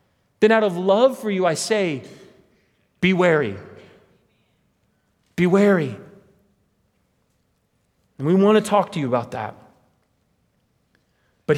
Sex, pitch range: male, 130-195 Hz